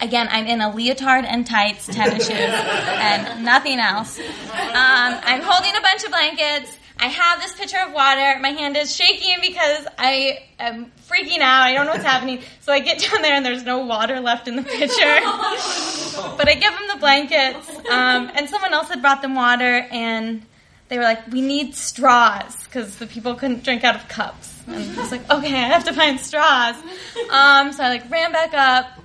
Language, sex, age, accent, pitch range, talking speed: English, female, 20-39, American, 235-300 Hz, 200 wpm